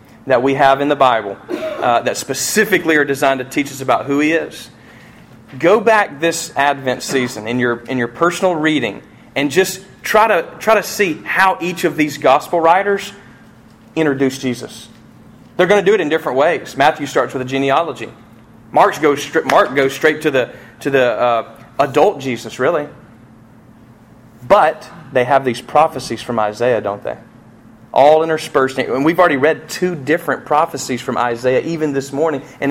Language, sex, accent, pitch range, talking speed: English, male, American, 120-165 Hz, 175 wpm